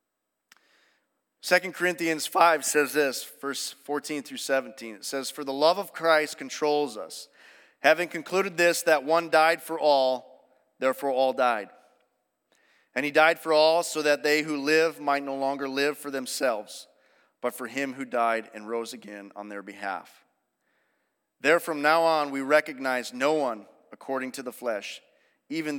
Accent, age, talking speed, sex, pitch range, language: American, 40-59, 160 wpm, male, 125-165 Hz, English